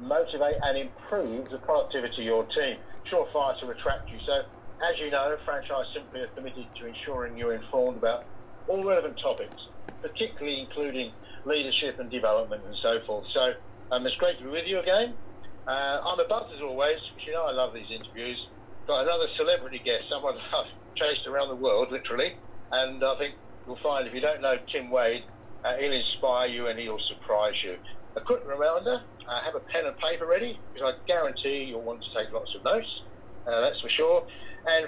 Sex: male